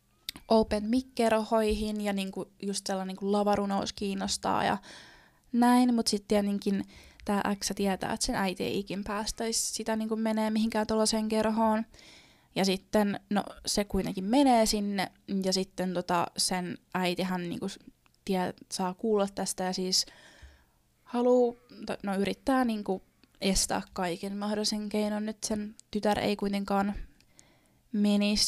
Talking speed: 130 wpm